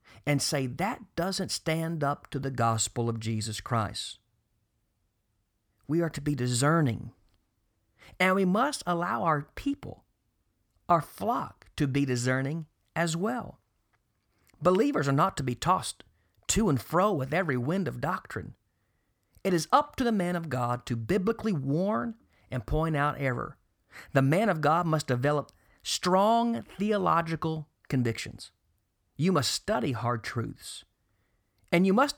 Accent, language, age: American, English, 50-69